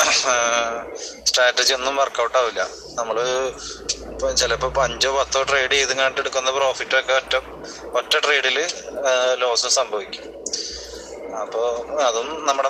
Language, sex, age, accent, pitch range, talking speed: English, male, 20-39, Indian, 120-140 Hz, 50 wpm